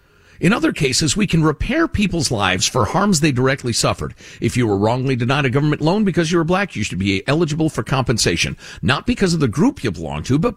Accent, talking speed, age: American, 225 wpm, 50-69